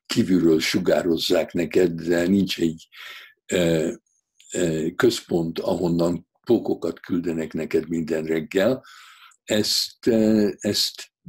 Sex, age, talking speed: male, 60-79, 90 wpm